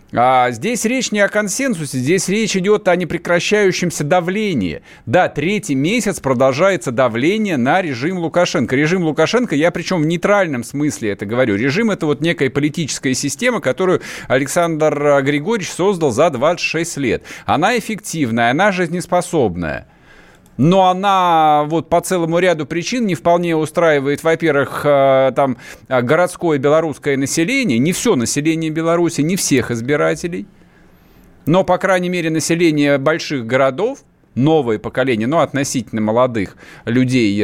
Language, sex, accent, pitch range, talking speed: Russian, male, native, 130-175 Hz, 130 wpm